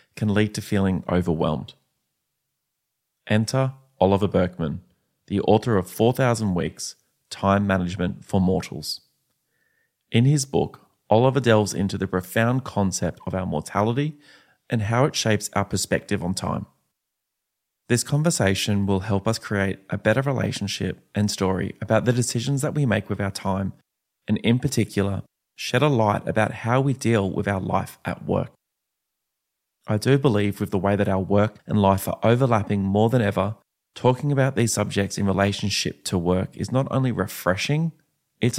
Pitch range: 95-120 Hz